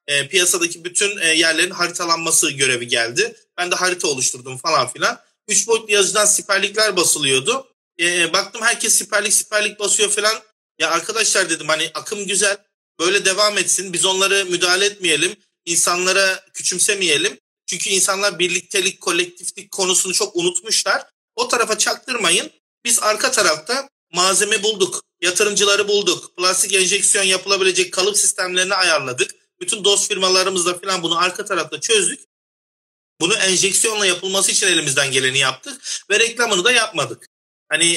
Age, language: 40-59, Turkish